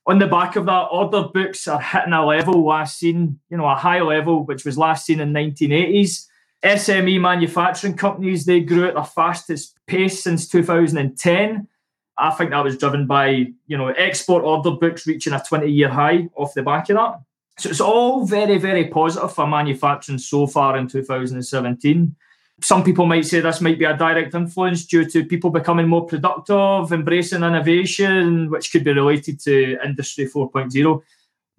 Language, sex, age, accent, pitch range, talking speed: English, male, 20-39, British, 145-180 Hz, 175 wpm